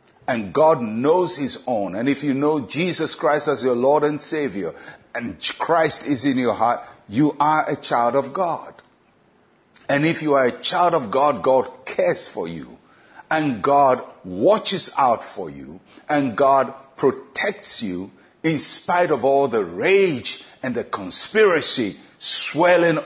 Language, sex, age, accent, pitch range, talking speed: English, male, 60-79, Nigerian, 105-150 Hz, 155 wpm